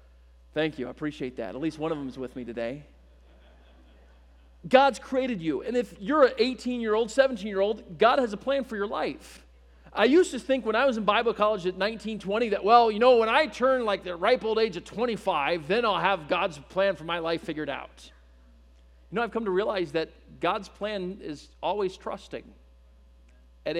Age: 40-59